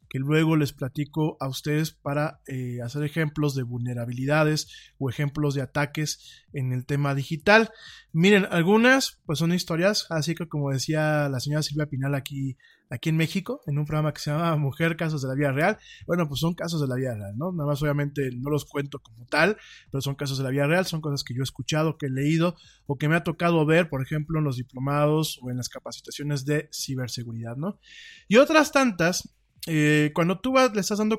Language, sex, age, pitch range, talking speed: Spanish, male, 20-39, 140-175 Hz, 210 wpm